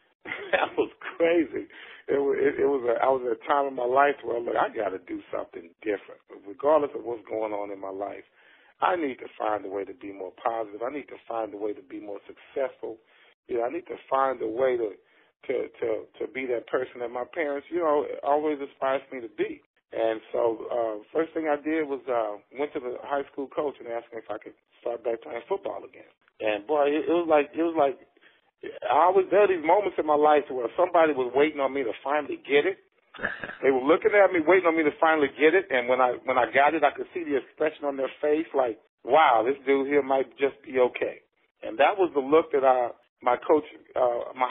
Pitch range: 125-175 Hz